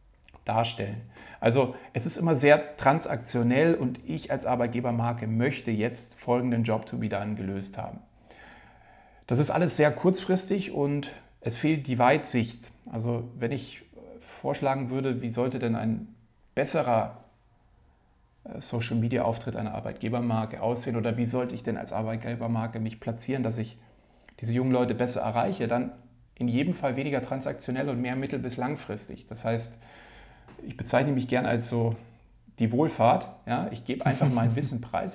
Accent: German